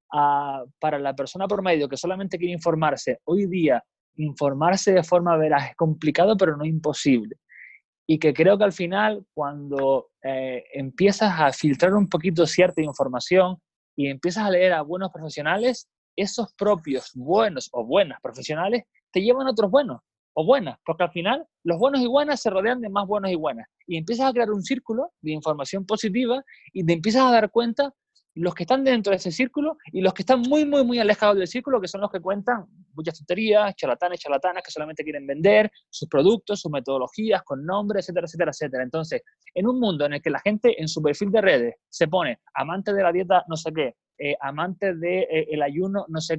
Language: Spanish